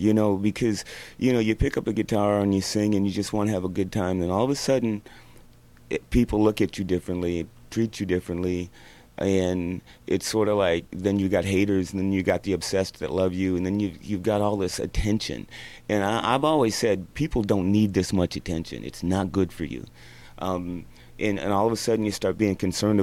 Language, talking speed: English, 230 wpm